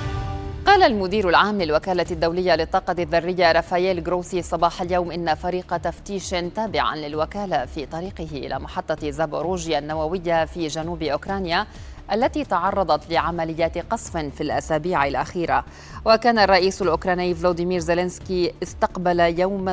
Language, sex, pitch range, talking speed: Arabic, female, 160-190 Hz, 120 wpm